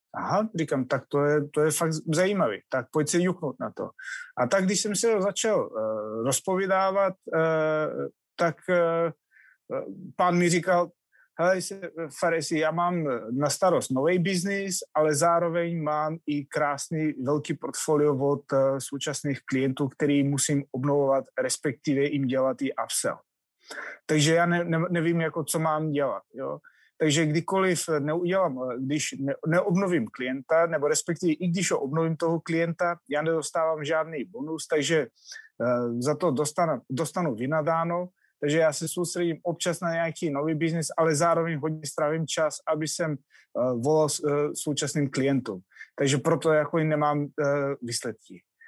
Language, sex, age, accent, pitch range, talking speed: Czech, male, 30-49, native, 145-170 Hz, 140 wpm